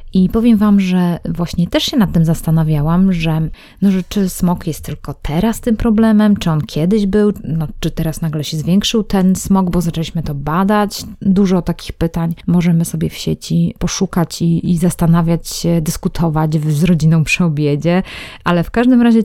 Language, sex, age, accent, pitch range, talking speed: Polish, female, 20-39, native, 165-205 Hz, 170 wpm